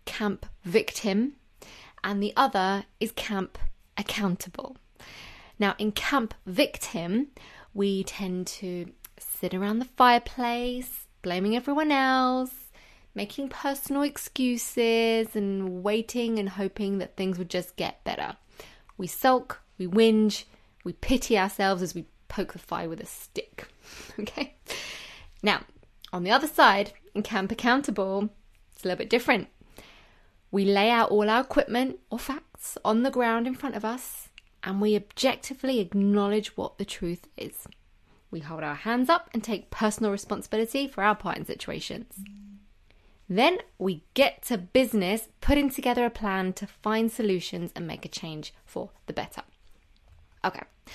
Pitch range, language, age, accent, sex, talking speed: 190-245 Hz, English, 20-39, British, female, 145 wpm